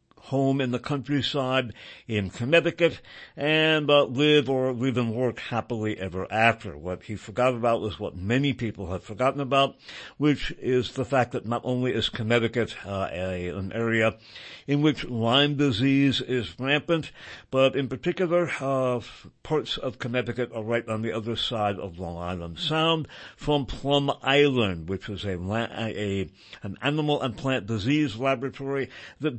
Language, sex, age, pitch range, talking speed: English, male, 60-79, 105-135 Hz, 160 wpm